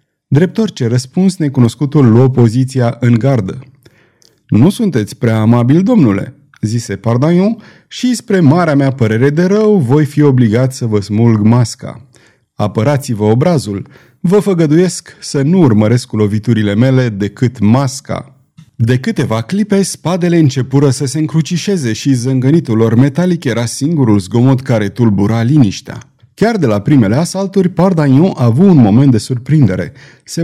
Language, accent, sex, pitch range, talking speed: Romanian, native, male, 115-155 Hz, 140 wpm